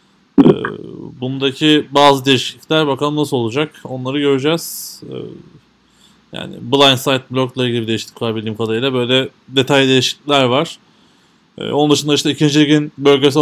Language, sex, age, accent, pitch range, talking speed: Turkish, male, 20-39, native, 125-145 Hz, 115 wpm